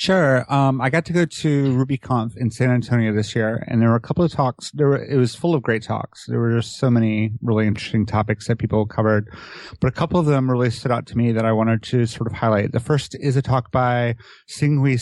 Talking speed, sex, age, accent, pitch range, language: 250 wpm, male, 30-49, American, 115-135 Hz, English